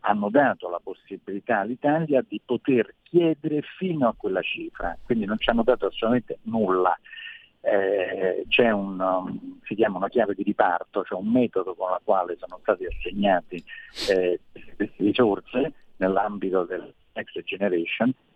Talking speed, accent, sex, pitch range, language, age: 145 wpm, native, male, 110-185 Hz, Italian, 50-69